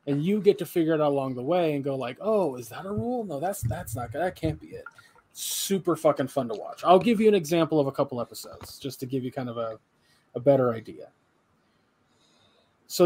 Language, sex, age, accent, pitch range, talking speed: English, male, 20-39, American, 135-180 Hz, 240 wpm